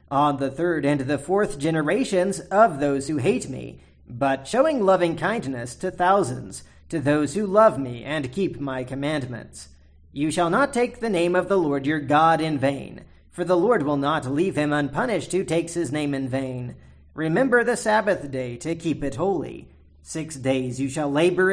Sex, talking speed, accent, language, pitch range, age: male, 185 wpm, American, English, 135-180 Hz, 40-59